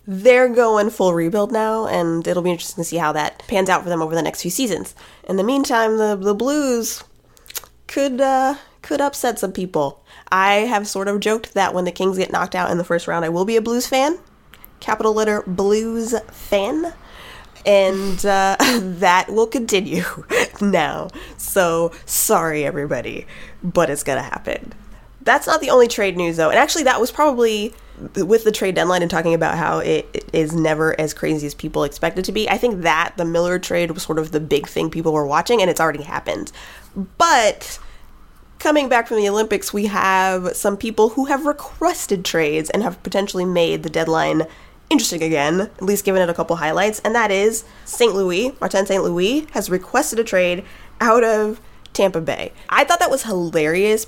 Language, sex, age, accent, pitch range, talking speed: English, female, 20-39, American, 175-225 Hz, 190 wpm